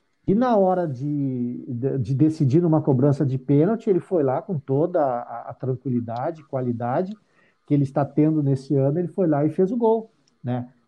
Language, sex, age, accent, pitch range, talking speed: Portuguese, male, 50-69, Brazilian, 135-180 Hz, 190 wpm